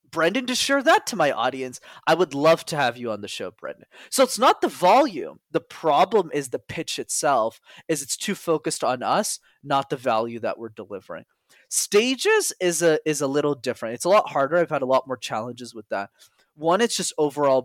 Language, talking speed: English, 210 wpm